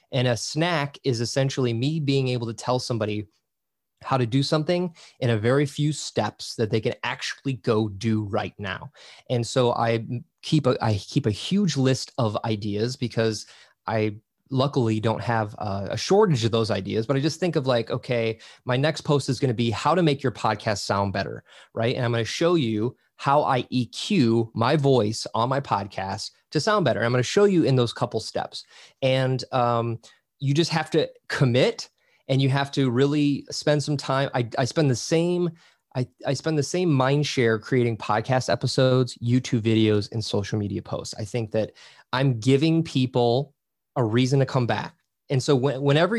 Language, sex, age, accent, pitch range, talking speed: English, male, 20-39, American, 115-150 Hz, 195 wpm